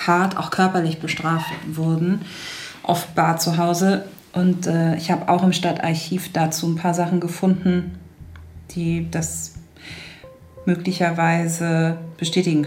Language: German